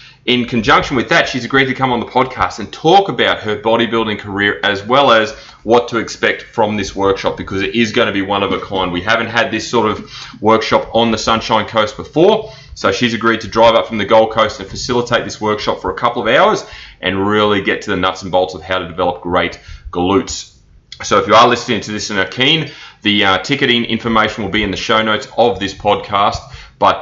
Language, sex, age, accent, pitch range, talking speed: English, male, 30-49, Australian, 100-120 Hz, 230 wpm